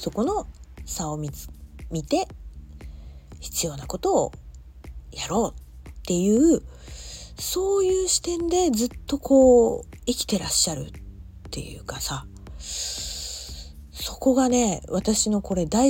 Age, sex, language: 40-59, female, Japanese